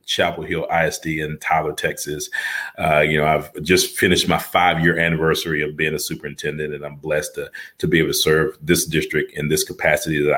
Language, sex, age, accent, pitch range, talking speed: English, male, 40-59, American, 75-95 Hz, 200 wpm